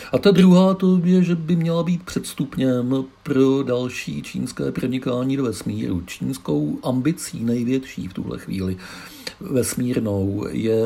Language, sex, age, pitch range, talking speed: Czech, male, 50-69, 100-125 Hz, 135 wpm